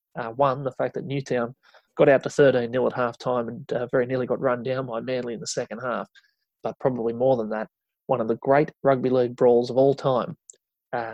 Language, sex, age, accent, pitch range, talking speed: English, male, 20-39, Australian, 125-145 Hz, 230 wpm